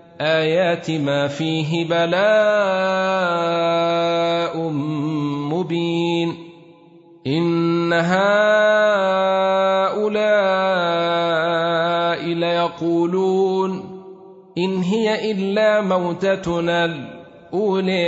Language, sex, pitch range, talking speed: Arabic, male, 165-190 Hz, 45 wpm